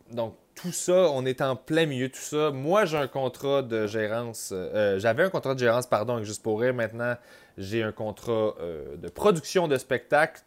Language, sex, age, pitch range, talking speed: English, male, 30-49, 115-155 Hz, 200 wpm